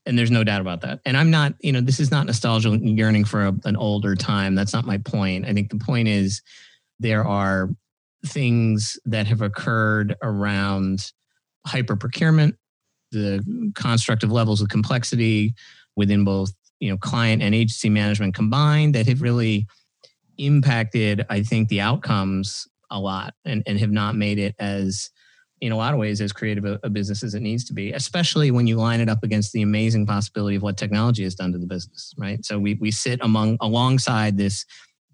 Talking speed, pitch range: 185 wpm, 100-115 Hz